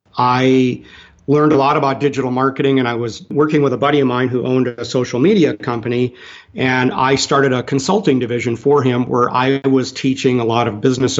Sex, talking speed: male, 205 wpm